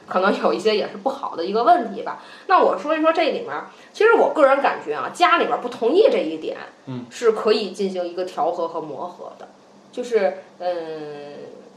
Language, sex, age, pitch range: Chinese, female, 20-39, 180-265 Hz